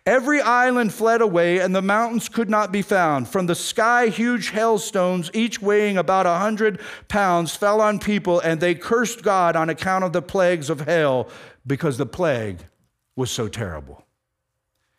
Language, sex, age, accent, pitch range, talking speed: English, male, 50-69, American, 175-220 Hz, 170 wpm